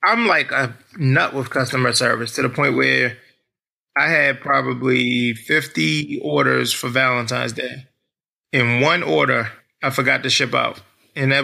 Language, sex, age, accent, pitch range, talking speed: English, male, 20-39, American, 120-140 Hz, 150 wpm